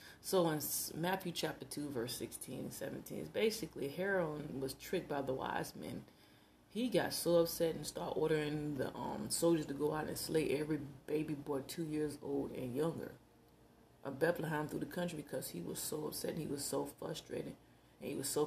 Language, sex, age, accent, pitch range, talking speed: English, female, 30-49, American, 135-170 Hz, 195 wpm